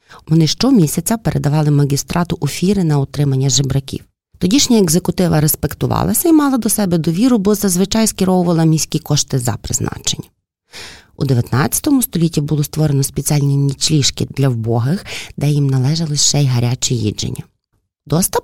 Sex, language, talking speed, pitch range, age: female, Ukrainian, 130 wpm, 130-175 Hz, 30-49